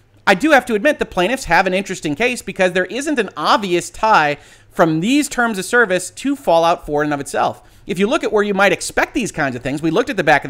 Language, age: English, 30-49